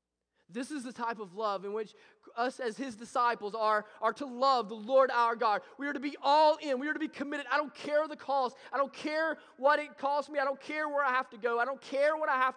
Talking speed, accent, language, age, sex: 270 wpm, American, English, 20-39, male